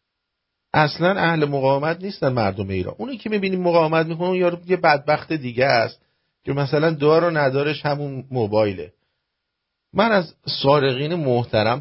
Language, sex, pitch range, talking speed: English, male, 120-160 Hz, 130 wpm